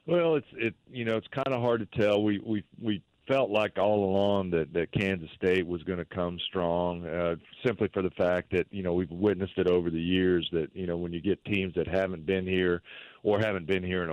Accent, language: American, English